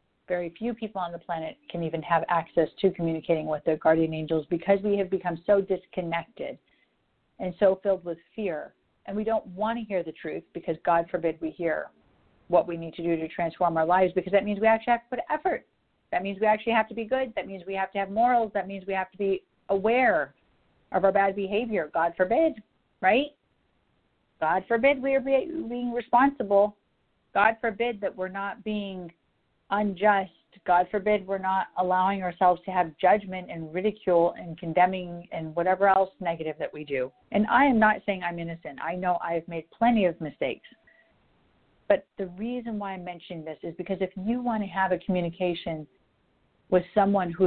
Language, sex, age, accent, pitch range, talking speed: English, female, 40-59, American, 170-210 Hz, 195 wpm